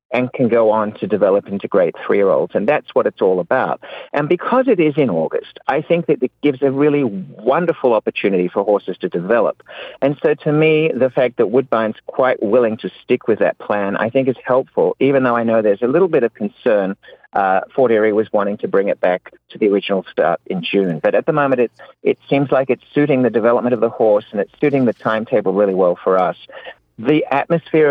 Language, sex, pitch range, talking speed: English, male, 110-150 Hz, 225 wpm